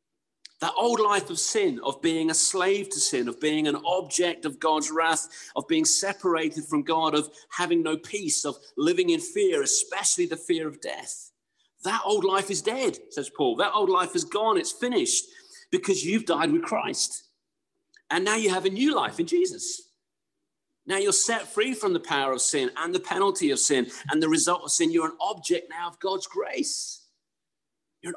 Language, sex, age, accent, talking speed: English, male, 40-59, British, 195 wpm